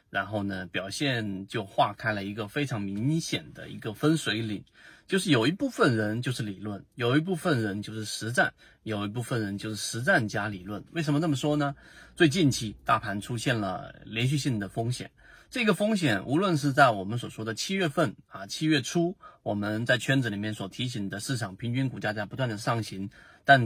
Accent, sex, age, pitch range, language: native, male, 30-49, 105-150 Hz, Chinese